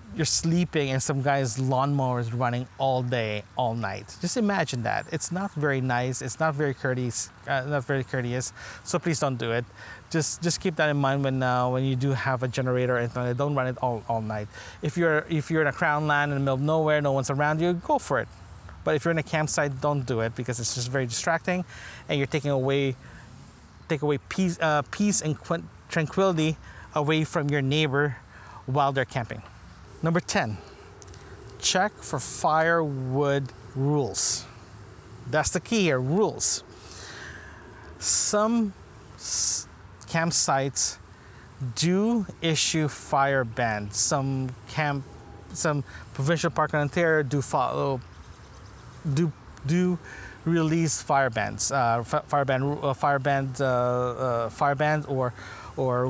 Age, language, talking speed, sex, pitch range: 20-39, English, 155 wpm, male, 115-155 Hz